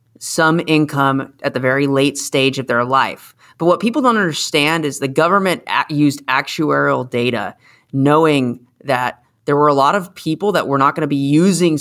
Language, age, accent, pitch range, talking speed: English, 30-49, American, 130-165 Hz, 190 wpm